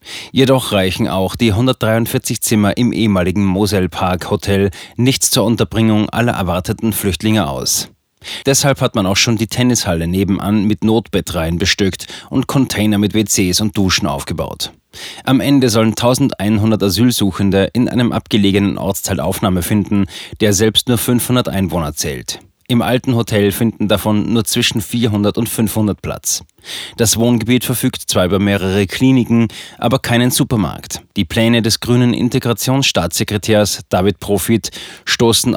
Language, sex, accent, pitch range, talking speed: German, male, German, 100-120 Hz, 140 wpm